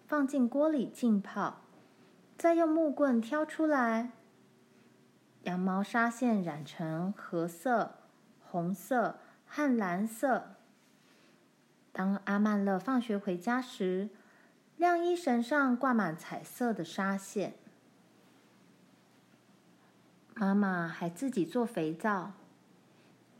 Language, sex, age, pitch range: Chinese, female, 20-39, 185-255 Hz